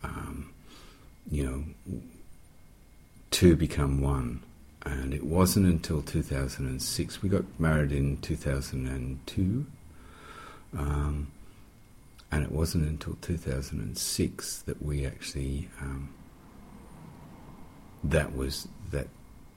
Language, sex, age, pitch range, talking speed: English, male, 50-69, 70-85 Hz, 90 wpm